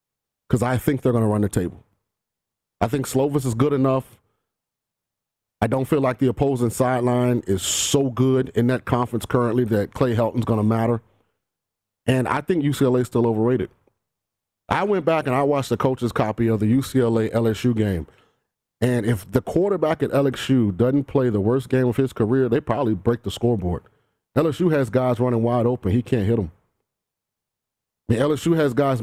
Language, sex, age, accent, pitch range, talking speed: English, male, 30-49, American, 115-135 Hz, 180 wpm